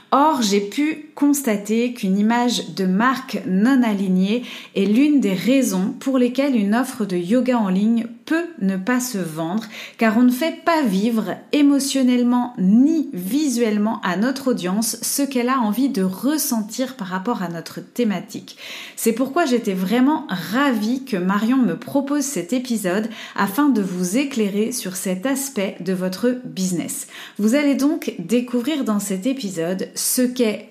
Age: 30-49